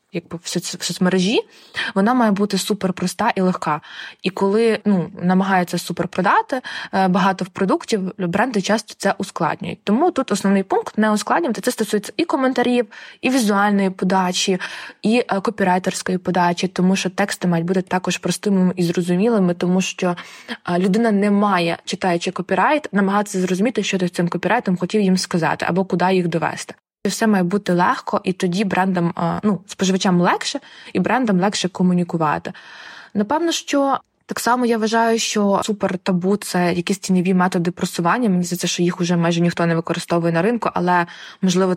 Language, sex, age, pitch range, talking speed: Ukrainian, female, 20-39, 175-205 Hz, 155 wpm